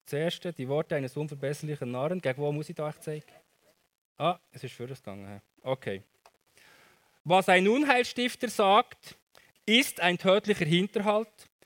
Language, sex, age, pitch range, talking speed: German, male, 20-39, 145-195 Hz, 135 wpm